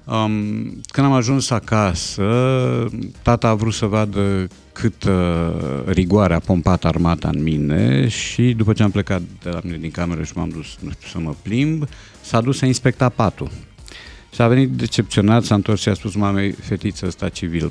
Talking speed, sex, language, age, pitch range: 165 wpm, male, Romanian, 50-69, 90-115 Hz